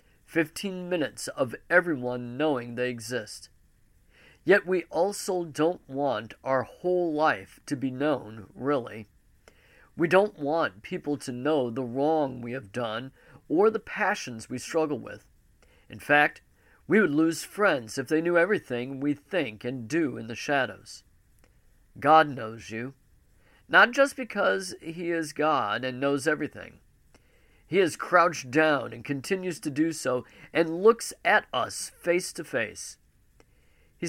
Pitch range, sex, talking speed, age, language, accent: 125-175 Hz, male, 145 wpm, 50-69, English, American